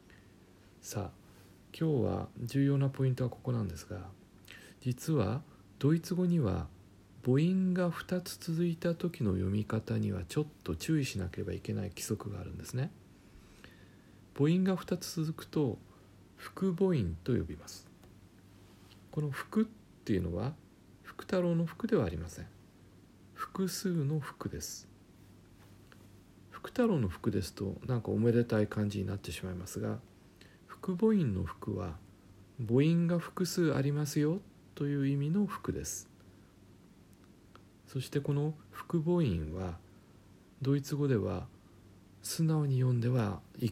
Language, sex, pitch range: Japanese, male, 95-145 Hz